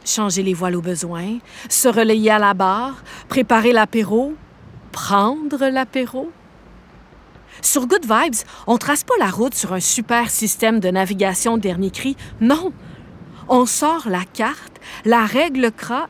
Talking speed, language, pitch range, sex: 145 wpm, French, 205-275 Hz, female